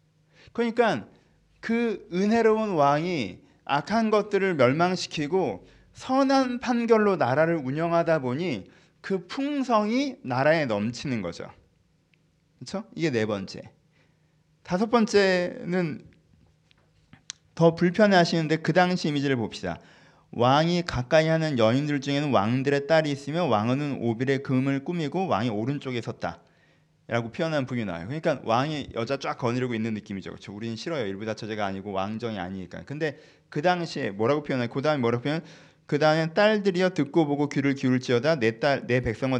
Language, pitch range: Korean, 120-175 Hz